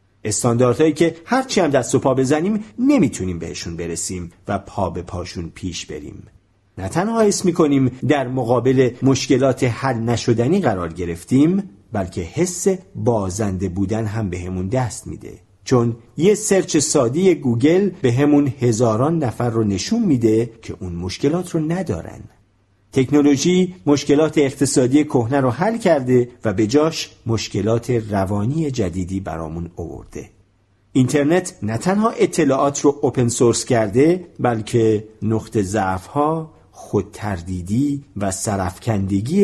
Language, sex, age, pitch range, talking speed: Persian, male, 50-69, 105-150 Hz, 125 wpm